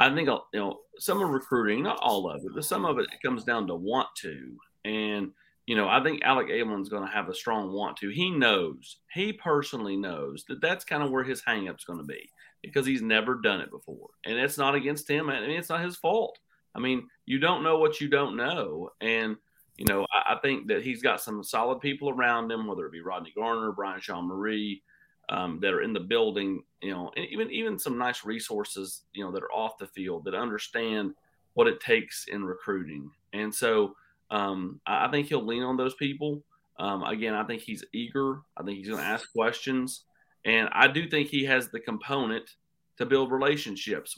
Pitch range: 105-145 Hz